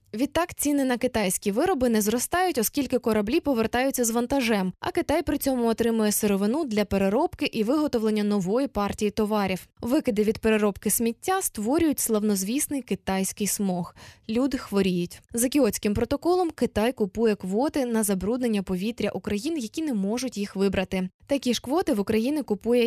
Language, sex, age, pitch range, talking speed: Ukrainian, female, 20-39, 200-260 Hz, 145 wpm